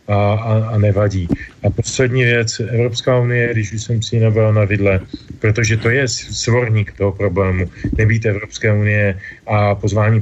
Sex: male